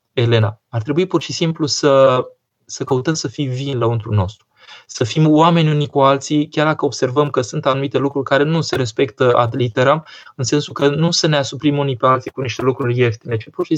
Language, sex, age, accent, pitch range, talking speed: Romanian, male, 20-39, native, 130-170 Hz, 220 wpm